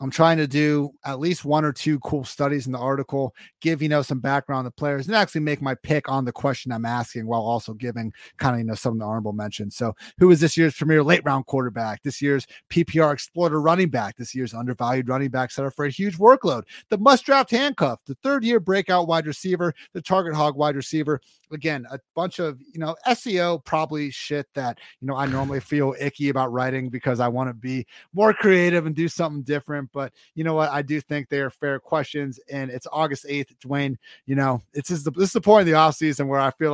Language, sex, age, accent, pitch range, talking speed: English, male, 30-49, American, 135-160 Hz, 230 wpm